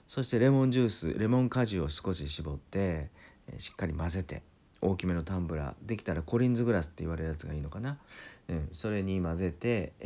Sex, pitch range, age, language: male, 85-120 Hz, 40-59, Japanese